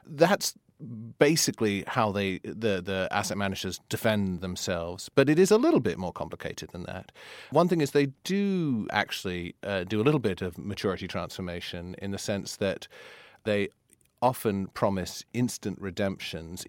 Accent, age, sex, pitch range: British, 30-49, male, 90-100 Hz